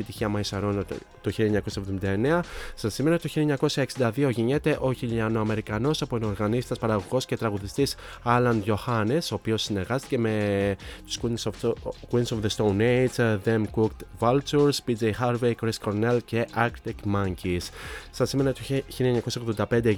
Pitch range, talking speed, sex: 105-125 Hz, 145 wpm, male